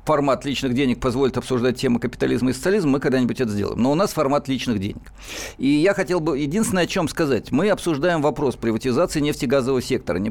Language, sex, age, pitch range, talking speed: Russian, male, 50-69, 130-170 Hz, 200 wpm